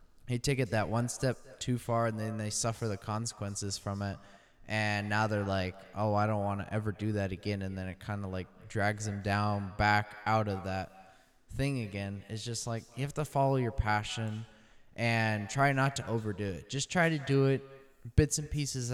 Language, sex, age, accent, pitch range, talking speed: English, male, 20-39, American, 105-130 Hz, 210 wpm